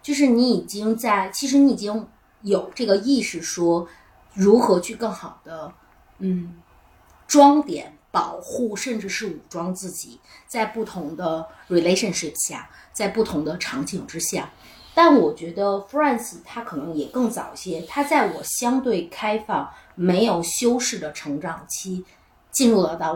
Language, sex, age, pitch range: Chinese, female, 30-49, 175-250 Hz